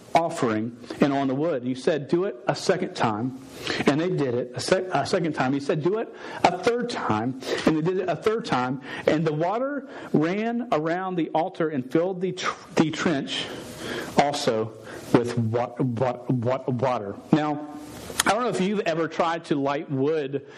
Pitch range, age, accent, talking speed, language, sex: 130-180 Hz, 50-69, American, 190 wpm, English, male